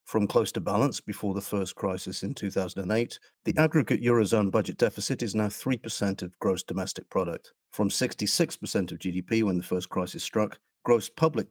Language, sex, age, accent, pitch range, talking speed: English, male, 50-69, British, 95-120 Hz, 170 wpm